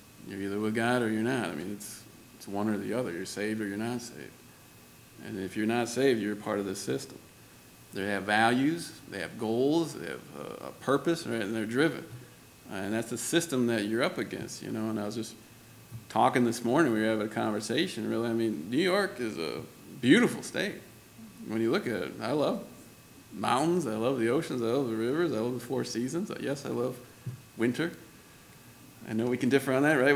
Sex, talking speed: male, 220 wpm